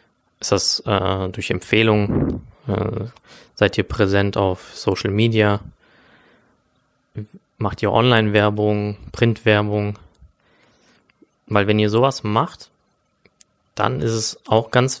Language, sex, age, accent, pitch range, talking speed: German, male, 20-39, German, 105-120 Hz, 100 wpm